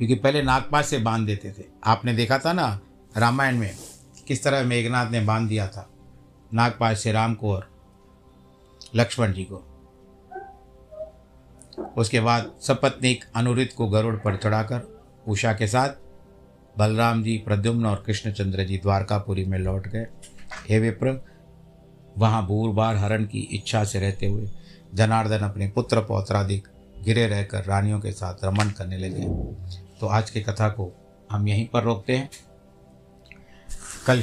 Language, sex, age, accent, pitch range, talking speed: Hindi, male, 60-79, native, 95-115 Hz, 145 wpm